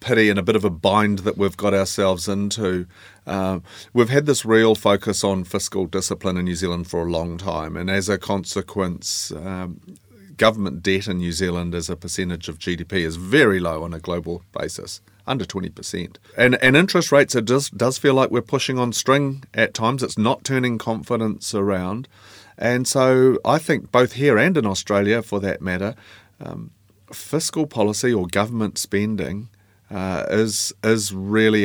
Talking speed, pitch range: 175 wpm, 95-110 Hz